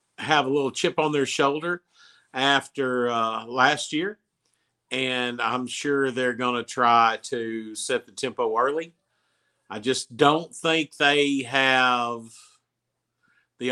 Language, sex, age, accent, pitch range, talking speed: English, male, 50-69, American, 120-140 Hz, 130 wpm